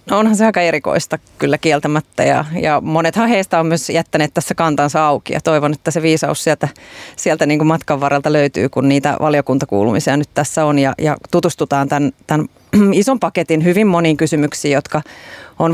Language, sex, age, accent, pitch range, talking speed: Finnish, female, 30-49, native, 145-175 Hz, 170 wpm